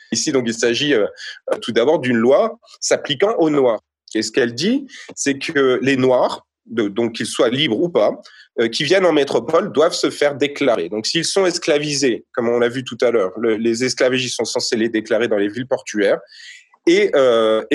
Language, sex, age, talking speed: French, male, 30-49, 205 wpm